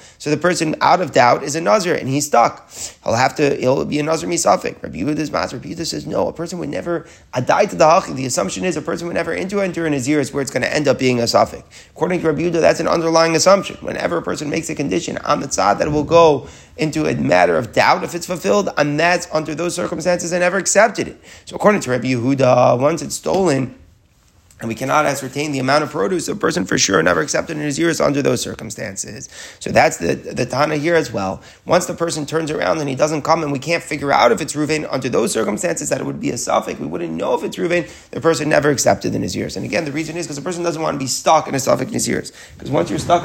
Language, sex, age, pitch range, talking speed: English, male, 30-49, 145-170 Hz, 260 wpm